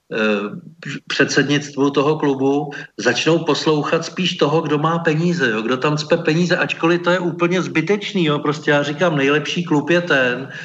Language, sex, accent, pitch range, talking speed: Czech, male, native, 130-150 Hz, 160 wpm